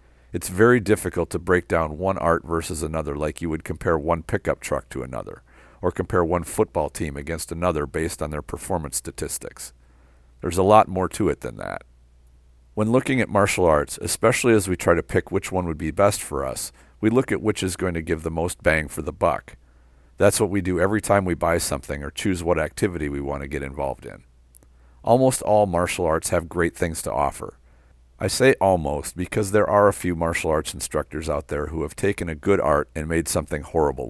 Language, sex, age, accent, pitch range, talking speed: English, male, 50-69, American, 70-95 Hz, 215 wpm